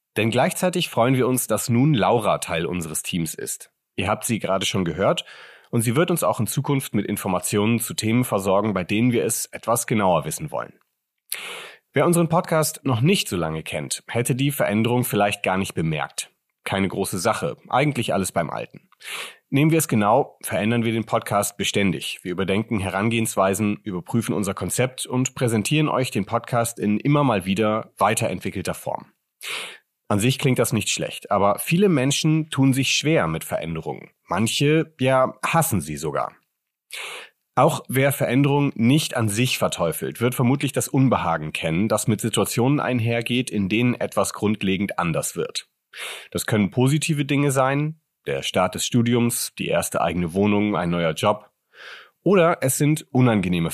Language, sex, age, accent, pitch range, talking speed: German, male, 30-49, German, 100-135 Hz, 165 wpm